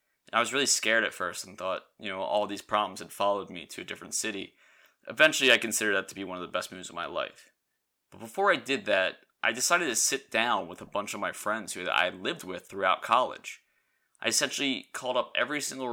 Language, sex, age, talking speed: English, male, 20-39, 235 wpm